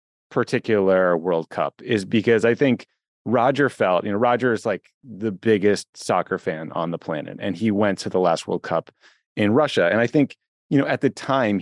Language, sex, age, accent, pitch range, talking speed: English, male, 30-49, American, 95-115 Hz, 200 wpm